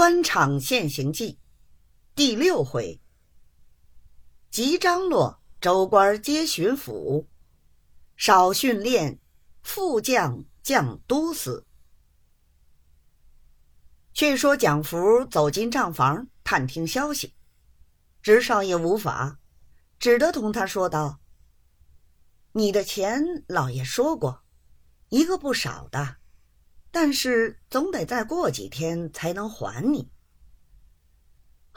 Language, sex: Chinese, female